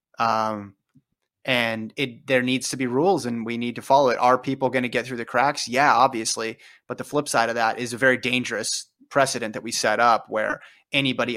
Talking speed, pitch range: 215 wpm, 120-135 Hz